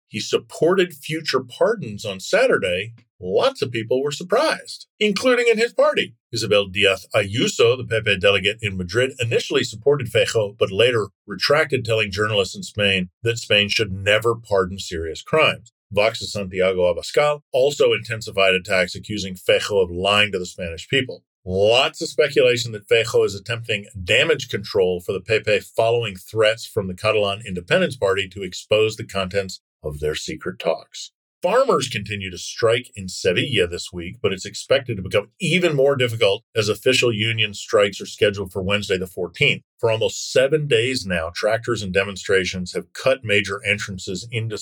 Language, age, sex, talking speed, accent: English, 50-69, male, 160 wpm, American